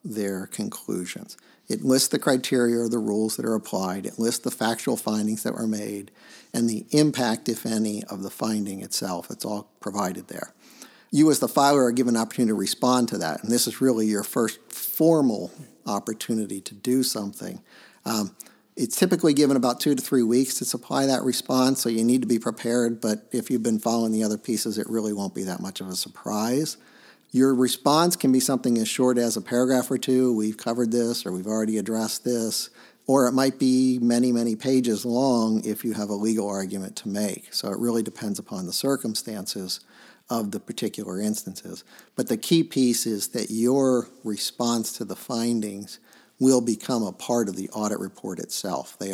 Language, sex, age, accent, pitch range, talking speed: English, male, 50-69, American, 105-125 Hz, 195 wpm